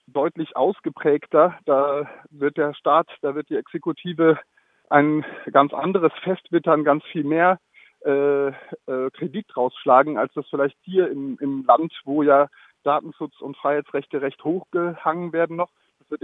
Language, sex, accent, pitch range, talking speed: German, male, German, 135-160 Hz, 140 wpm